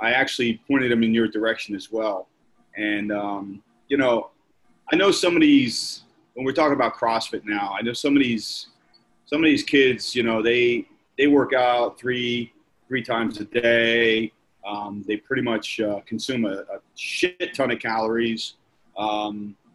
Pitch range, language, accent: 110-140 Hz, English, American